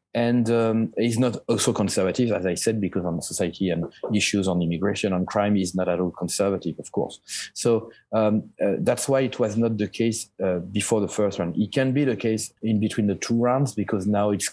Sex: male